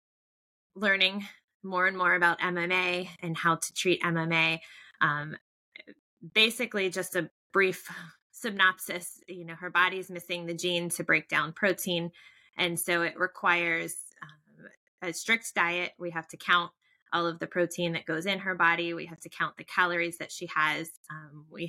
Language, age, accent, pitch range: English, 20-39, American, 165-190 Hz